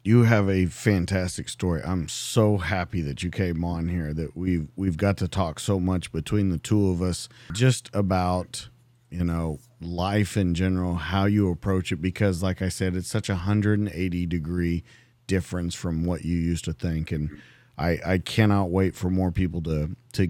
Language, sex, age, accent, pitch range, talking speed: English, male, 40-59, American, 85-105 Hz, 185 wpm